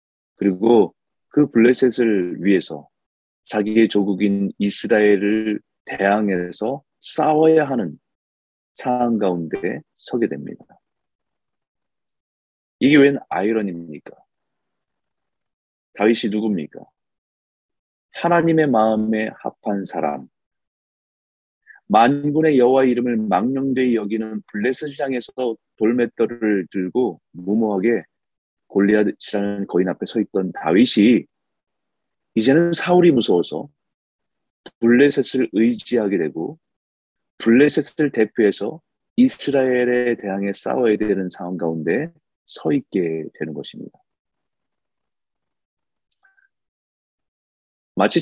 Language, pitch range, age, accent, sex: Korean, 100-135 Hz, 30-49, native, male